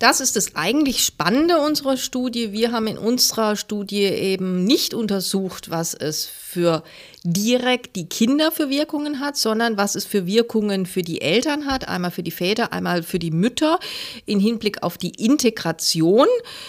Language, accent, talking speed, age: German, German, 165 wpm, 40-59